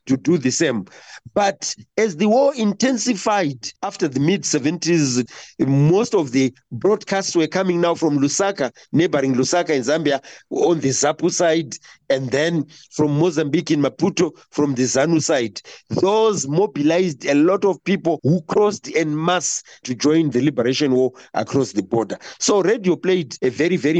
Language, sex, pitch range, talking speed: English, male, 135-175 Hz, 160 wpm